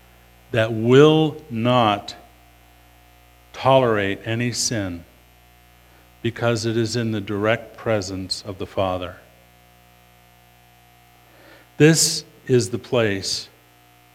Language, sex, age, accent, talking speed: English, male, 50-69, American, 85 wpm